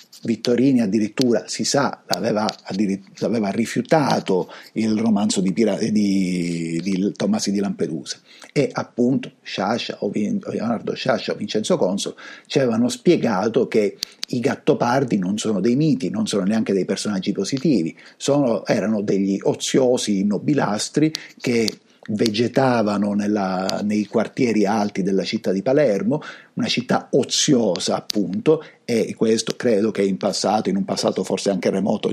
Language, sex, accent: Italian, male, native